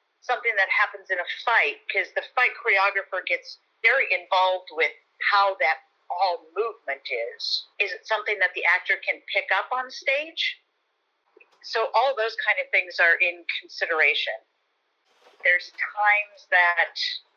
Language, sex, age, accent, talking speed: English, female, 50-69, American, 145 wpm